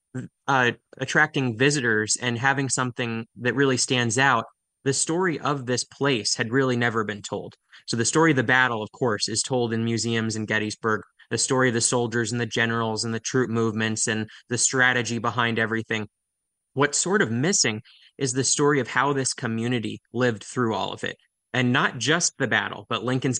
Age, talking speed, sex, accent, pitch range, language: 20-39, 190 wpm, male, American, 115-135 Hz, English